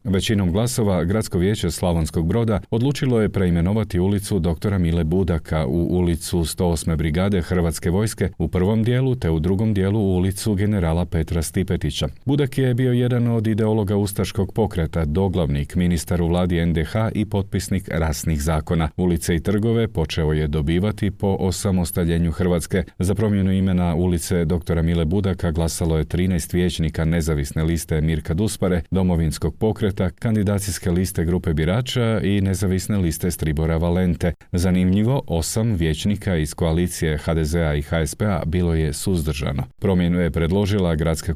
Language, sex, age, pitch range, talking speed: Croatian, male, 40-59, 80-100 Hz, 140 wpm